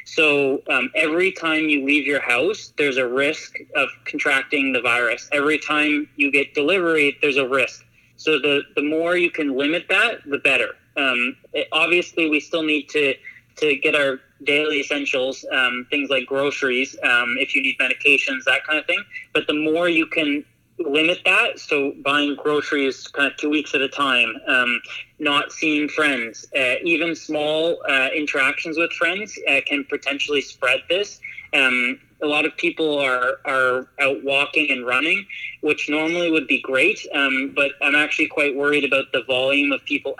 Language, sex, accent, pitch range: English, male, American, 140-165 Hz